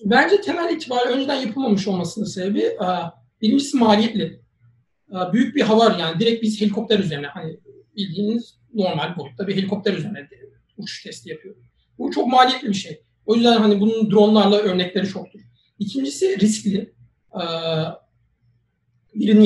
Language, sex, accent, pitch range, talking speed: Turkish, male, native, 185-235 Hz, 130 wpm